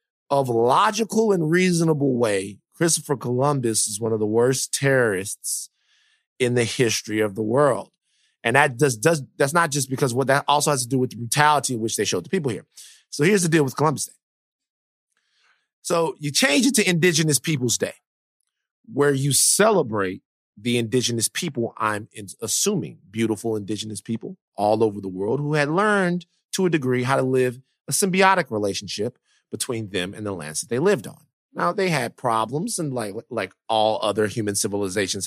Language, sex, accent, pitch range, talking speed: English, male, American, 110-170 Hz, 180 wpm